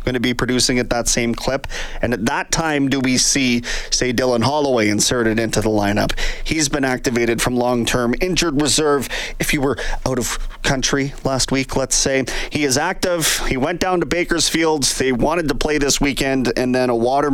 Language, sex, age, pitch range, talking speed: English, male, 30-49, 125-160 Hz, 195 wpm